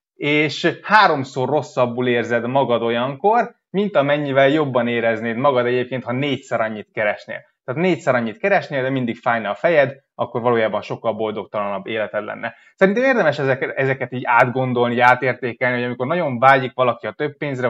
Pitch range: 125-160 Hz